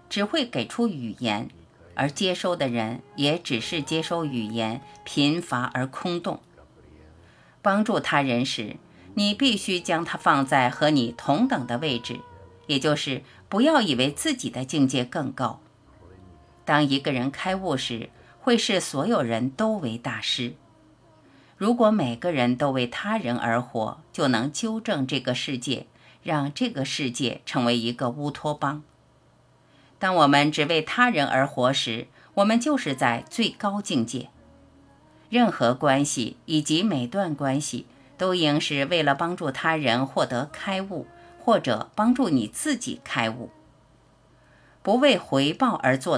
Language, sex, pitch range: Chinese, female, 125-185 Hz